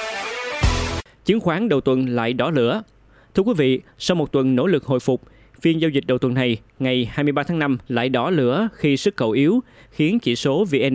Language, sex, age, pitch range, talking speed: Vietnamese, male, 20-39, 125-155 Hz, 210 wpm